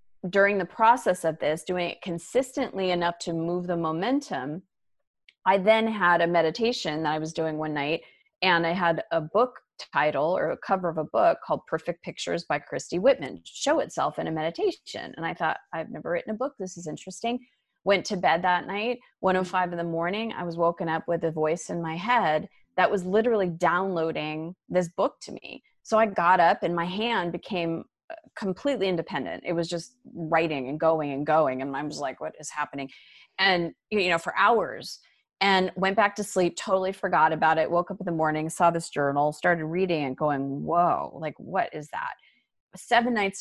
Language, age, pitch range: English, 30-49, 160-195 Hz